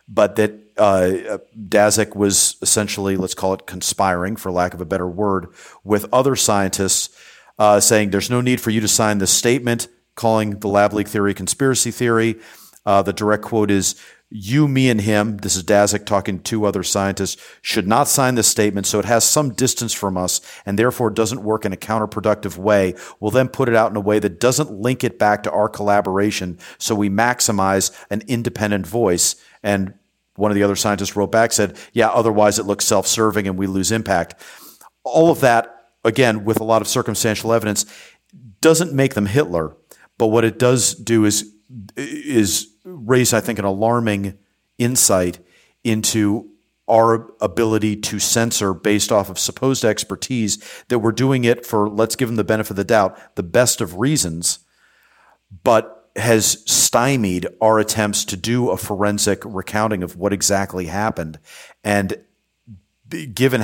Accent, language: American, English